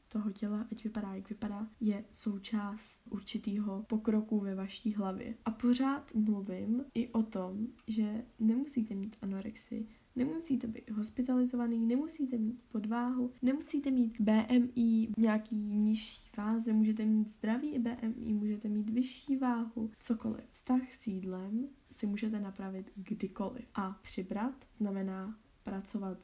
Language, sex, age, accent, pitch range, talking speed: Czech, female, 10-29, native, 210-235 Hz, 130 wpm